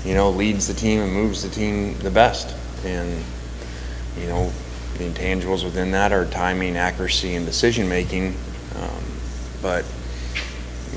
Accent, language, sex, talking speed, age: American, English, male, 140 wpm, 30-49